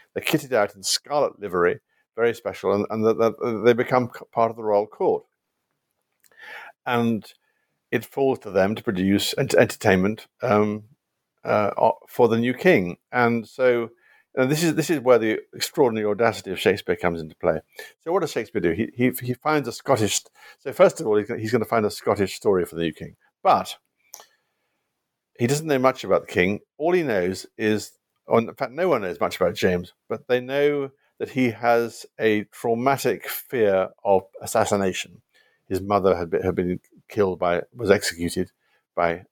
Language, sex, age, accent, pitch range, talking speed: English, male, 50-69, British, 95-125 Hz, 180 wpm